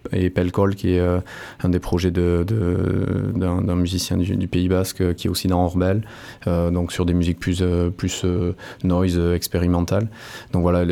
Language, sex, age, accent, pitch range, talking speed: French, male, 20-39, French, 90-95 Hz, 205 wpm